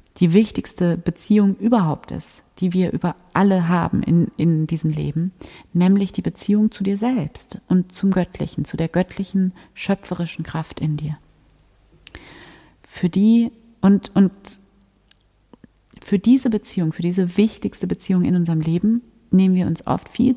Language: German